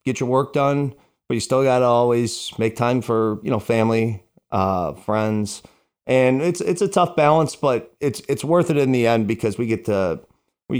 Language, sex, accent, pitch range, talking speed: English, male, American, 100-130 Hz, 205 wpm